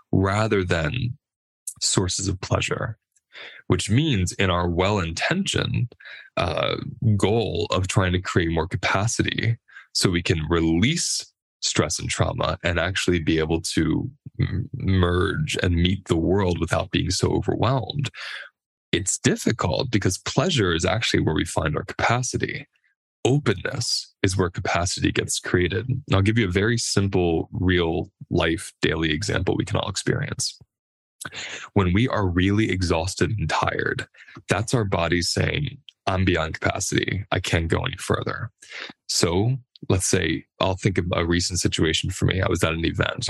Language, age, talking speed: English, 10-29, 145 wpm